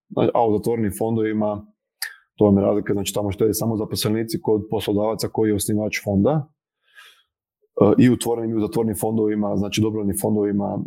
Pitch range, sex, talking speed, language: 105-115 Hz, male, 165 wpm, Croatian